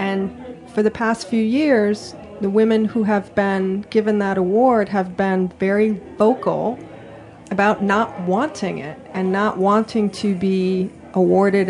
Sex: female